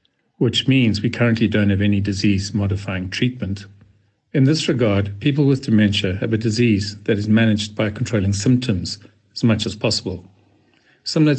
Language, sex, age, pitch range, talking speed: English, male, 50-69, 100-125 Hz, 160 wpm